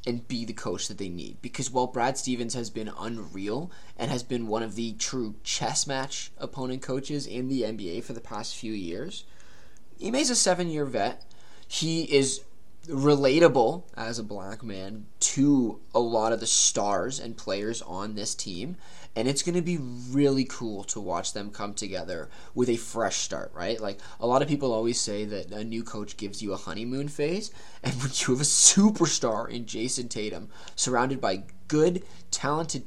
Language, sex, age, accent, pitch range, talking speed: English, male, 20-39, American, 110-135 Hz, 185 wpm